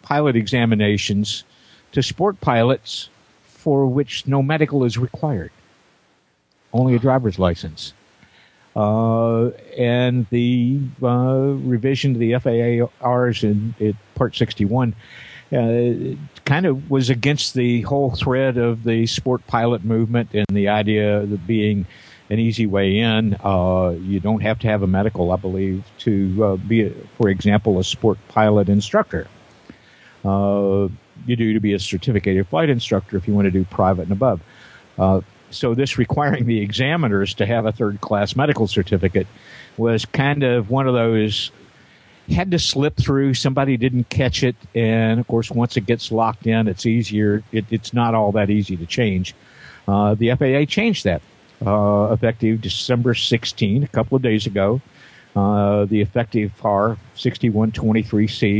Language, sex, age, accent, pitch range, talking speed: English, male, 50-69, American, 105-125 Hz, 155 wpm